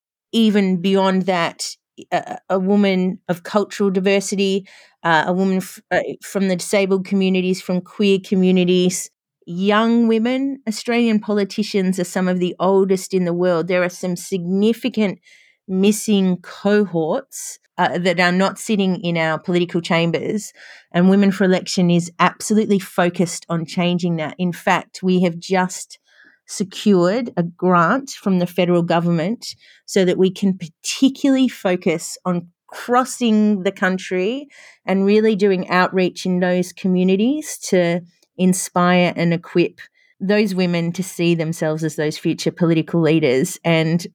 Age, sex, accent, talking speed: 30-49, female, Australian, 135 wpm